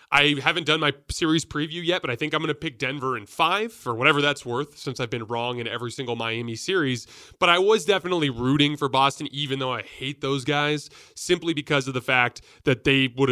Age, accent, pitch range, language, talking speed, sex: 30-49, American, 130-155 Hz, English, 230 wpm, male